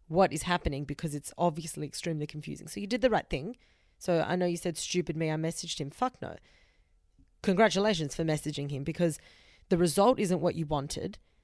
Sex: female